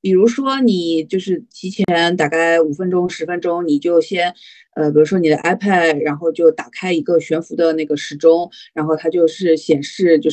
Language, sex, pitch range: Chinese, female, 160-225 Hz